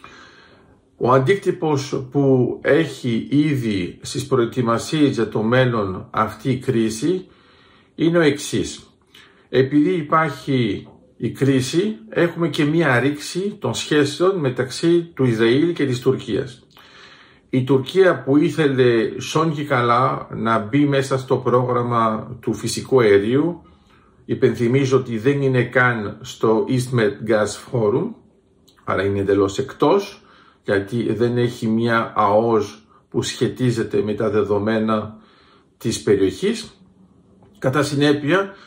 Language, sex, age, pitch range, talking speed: Greek, male, 50-69, 115-155 Hz, 115 wpm